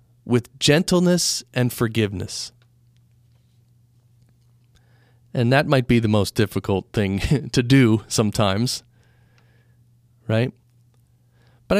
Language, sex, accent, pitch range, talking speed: English, male, American, 115-130 Hz, 85 wpm